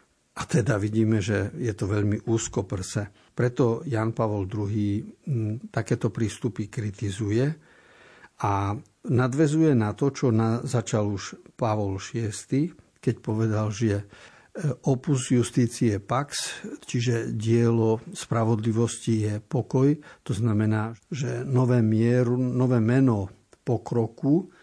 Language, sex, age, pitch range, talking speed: Slovak, male, 60-79, 105-125 Hz, 105 wpm